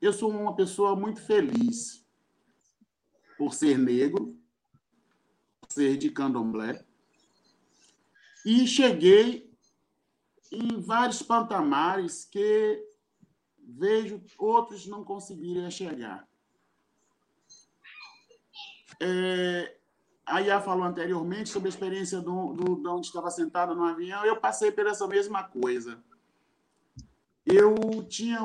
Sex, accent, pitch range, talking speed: male, Brazilian, 165-230 Hz, 100 wpm